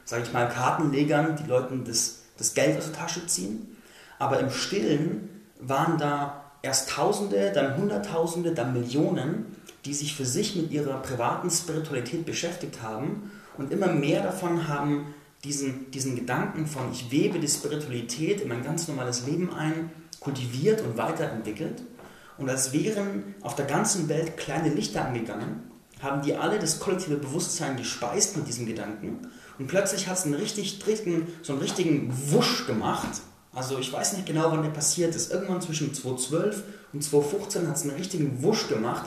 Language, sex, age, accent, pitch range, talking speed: German, male, 30-49, German, 135-170 Hz, 160 wpm